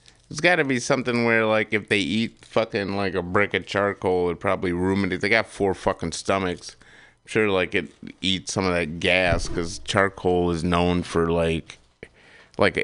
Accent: American